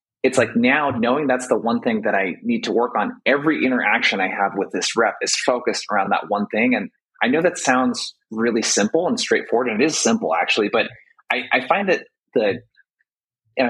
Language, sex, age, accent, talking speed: English, male, 30-49, American, 210 wpm